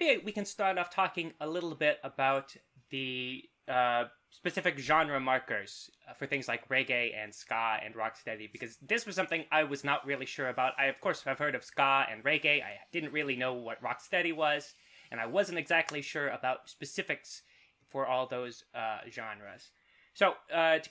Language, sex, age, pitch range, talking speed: English, male, 20-39, 125-165 Hz, 185 wpm